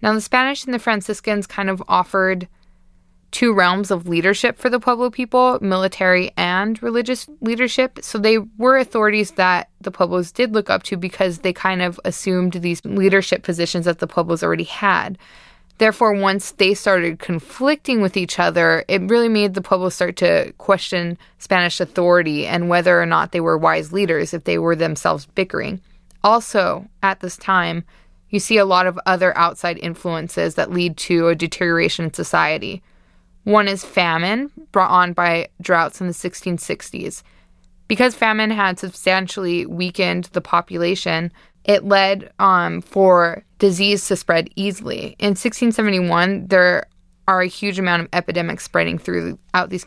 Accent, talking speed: American, 160 wpm